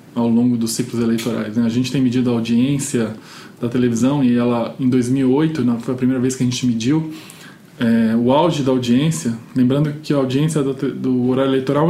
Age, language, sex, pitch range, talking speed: 20-39, Portuguese, male, 125-155 Hz, 190 wpm